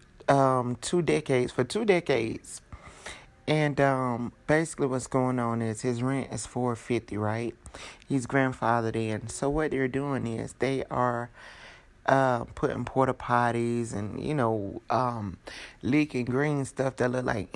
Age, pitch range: 30-49, 120-140 Hz